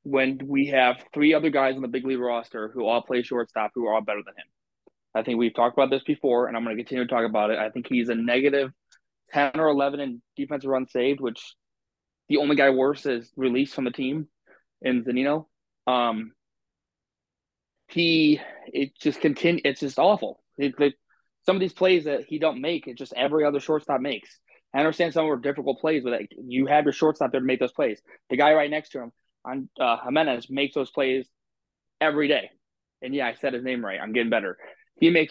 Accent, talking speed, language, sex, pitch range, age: American, 220 wpm, English, male, 125-155 Hz, 20-39